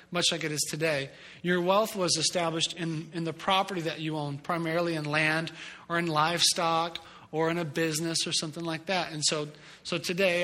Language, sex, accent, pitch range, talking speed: English, male, American, 165-195 Hz, 195 wpm